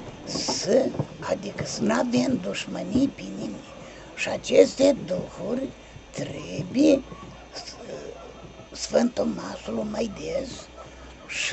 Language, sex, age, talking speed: Romanian, male, 50-69, 90 wpm